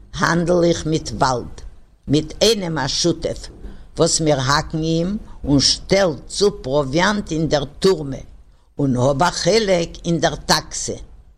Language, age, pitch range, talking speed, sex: English, 60-79, 150-195 Hz, 120 wpm, female